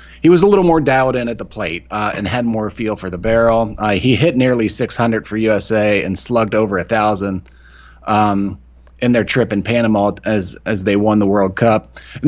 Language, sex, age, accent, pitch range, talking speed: English, male, 30-49, American, 100-120 Hz, 215 wpm